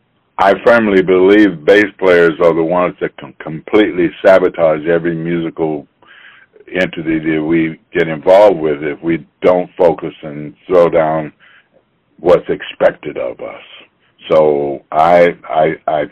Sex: male